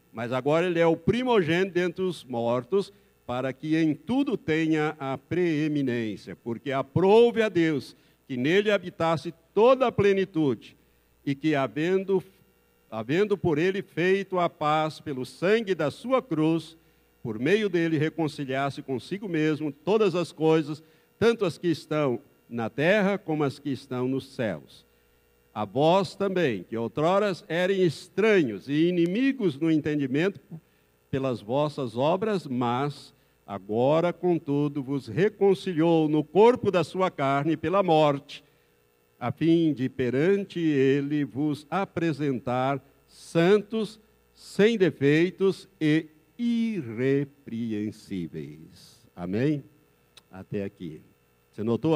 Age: 60-79